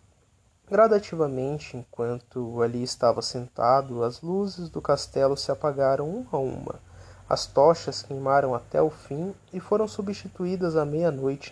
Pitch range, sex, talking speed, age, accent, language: 130-165 Hz, male, 130 wpm, 20-39, Brazilian, Portuguese